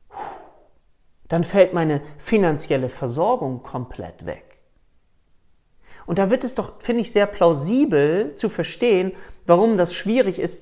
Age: 40-59